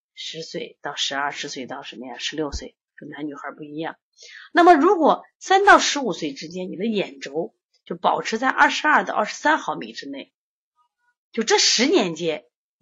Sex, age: female, 30-49